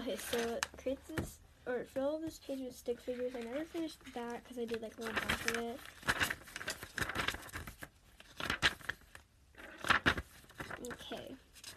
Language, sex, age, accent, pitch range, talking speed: English, female, 10-29, American, 225-265 Hz, 135 wpm